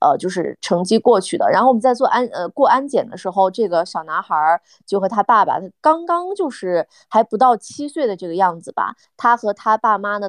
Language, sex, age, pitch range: Chinese, female, 20-39, 180-235 Hz